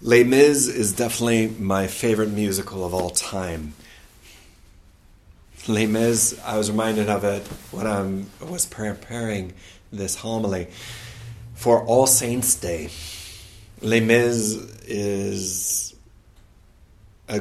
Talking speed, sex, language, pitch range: 105 wpm, male, English, 95-115 Hz